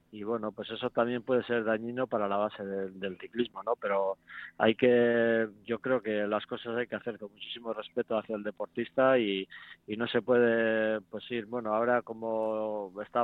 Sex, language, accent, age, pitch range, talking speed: male, Spanish, Spanish, 20-39, 105-120 Hz, 195 wpm